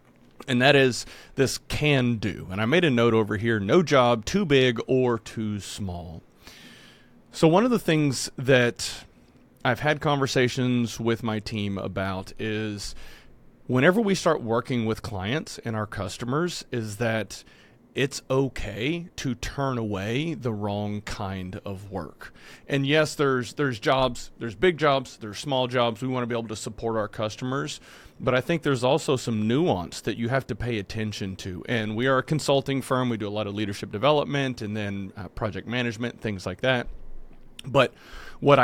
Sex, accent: male, American